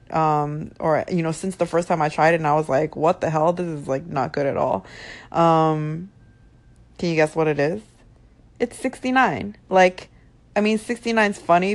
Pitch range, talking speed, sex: 155-185 Hz, 205 wpm, female